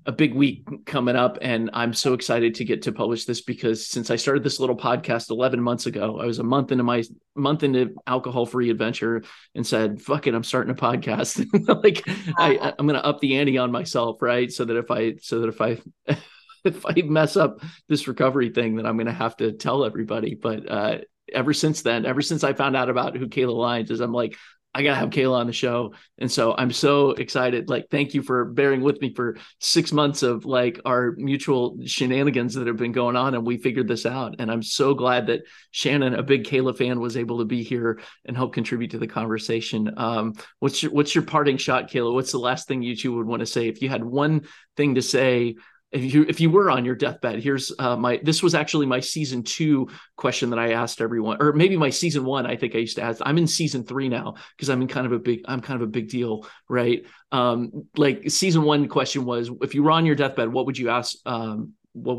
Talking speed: 240 wpm